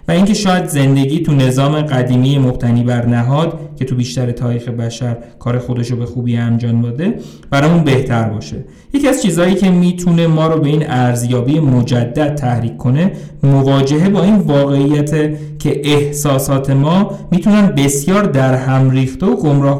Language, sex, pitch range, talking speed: Persian, male, 125-150 Hz, 150 wpm